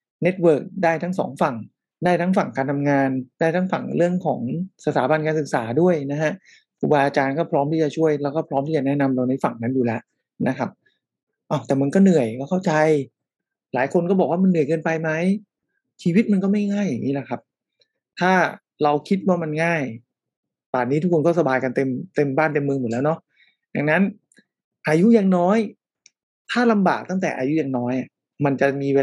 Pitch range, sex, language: 140-185 Hz, male, English